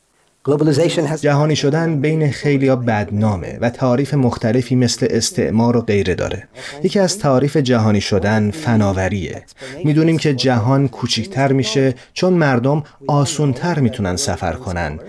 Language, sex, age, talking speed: Persian, male, 30-49, 130 wpm